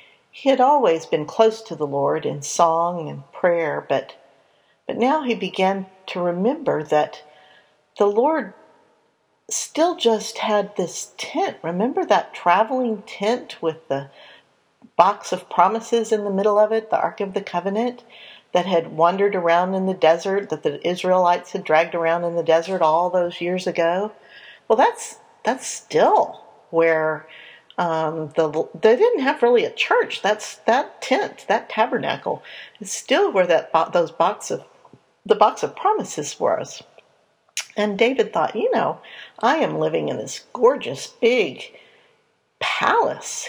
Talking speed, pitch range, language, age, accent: 150 wpm, 170-230 Hz, English, 50-69, American